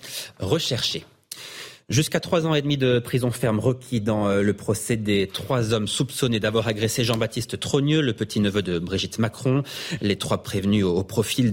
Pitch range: 105-135 Hz